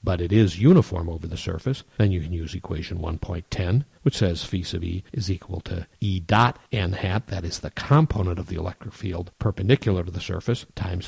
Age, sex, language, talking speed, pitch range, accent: 50-69, male, English, 205 wpm, 90-110 Hz, American